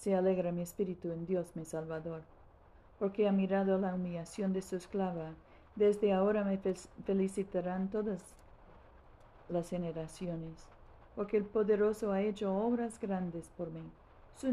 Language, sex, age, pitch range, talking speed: Spanish, female, 50-69, 165-195 Hz, 140 wpm